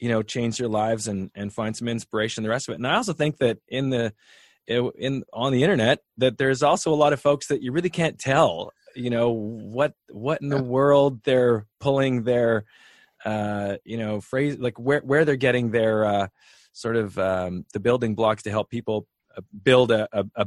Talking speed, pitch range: 210 wpm, 110-140 Hz